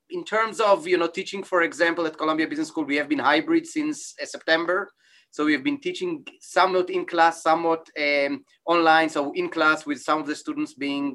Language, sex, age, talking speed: English, male, 30-49, 210 wpm